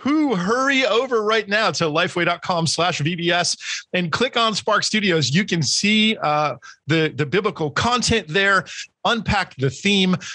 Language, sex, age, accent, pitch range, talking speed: English, male, 40-59, American, 155-210 Hz, 150 wpm